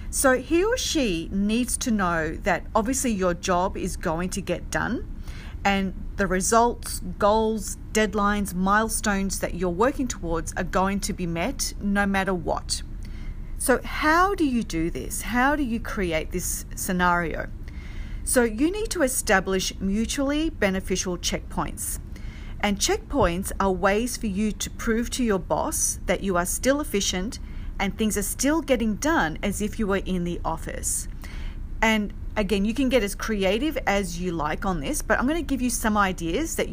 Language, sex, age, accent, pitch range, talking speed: English, female, 40-59, Australian, 185-235 Hz, 170 wpm